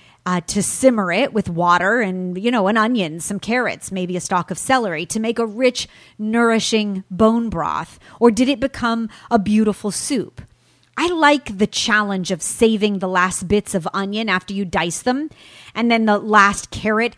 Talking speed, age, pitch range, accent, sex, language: 180 wpm, 30-49, 185-235 Hz, American, female, English